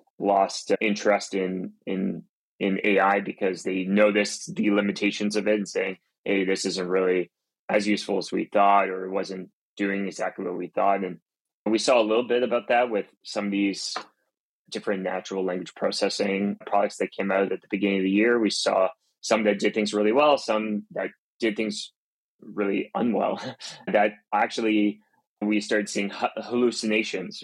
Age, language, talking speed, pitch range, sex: 20-39, English, 170 wpm, 95-105 Hz, male